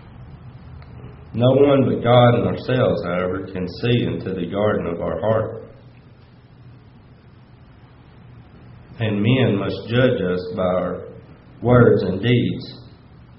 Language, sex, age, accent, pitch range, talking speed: English, male, 40-59, American, 100-120 Hz, 110 wpm